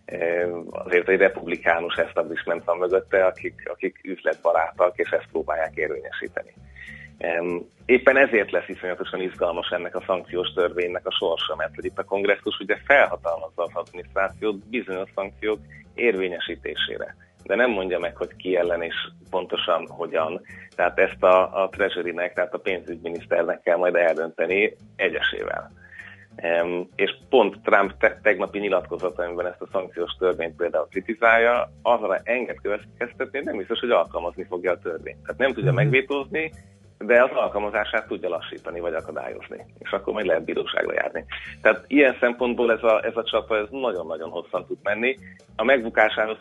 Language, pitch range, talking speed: Hungarian, 90-120 Hz, 145 wpm